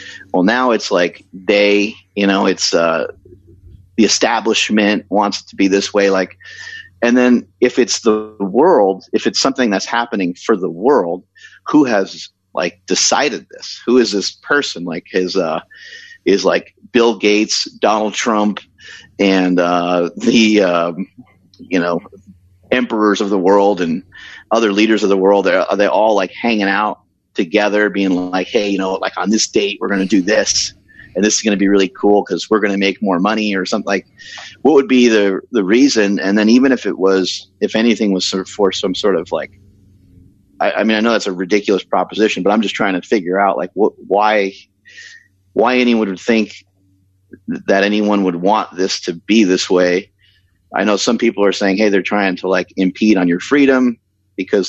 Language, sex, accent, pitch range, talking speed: English, male, American, 95-110 Hz, 195 wpm